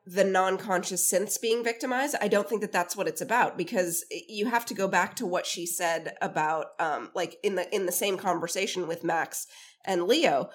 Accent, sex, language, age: American, female, English, 30-49